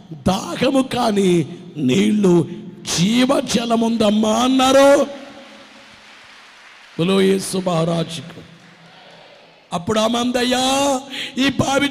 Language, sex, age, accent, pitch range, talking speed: Telugu, male, 50-69, native, 200-295 Hz, 55 wpm